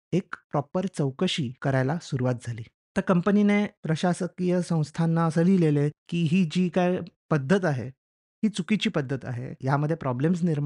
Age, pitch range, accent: 30-49, 135-180 Hz, native